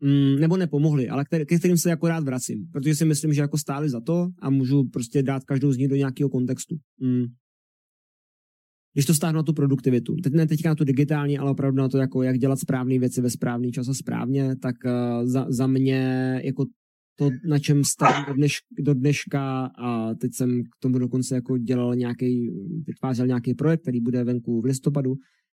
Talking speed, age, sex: 200 wpm, 20-39, male